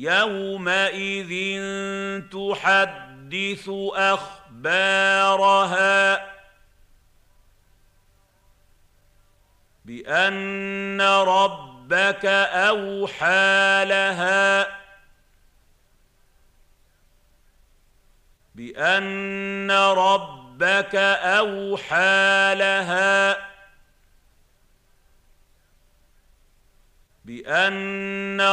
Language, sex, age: Arabic, male, 50-69